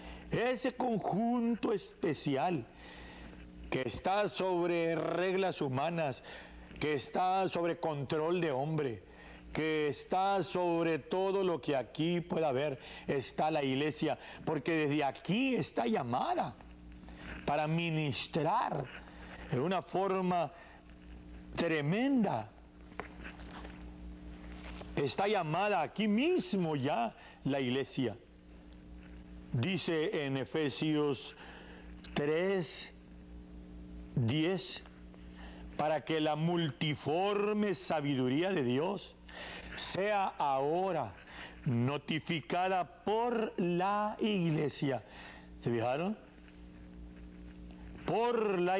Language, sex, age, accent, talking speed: English, male, 60-79, Mexican, 80 wpm